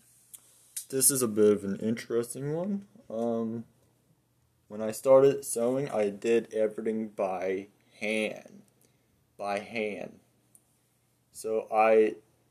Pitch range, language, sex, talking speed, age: 105-120 Hz, English, male, 105 wpm, 20-39